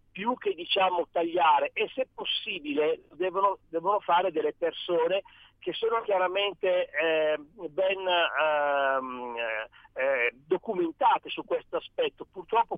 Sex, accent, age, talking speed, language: male, native, 50-69, 115 wpm, Italian